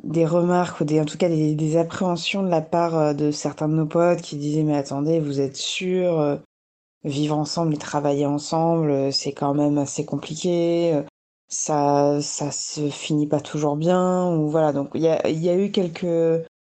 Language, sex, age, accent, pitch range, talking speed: French, female, 20-39, French, 155-180 Hz, 190 wpm